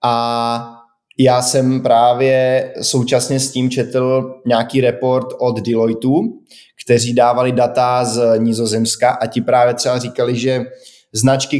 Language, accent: Czech, native